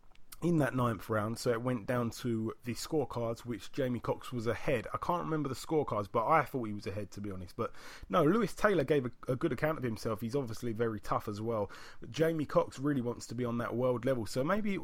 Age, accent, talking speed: 30-49, British, 245 wpm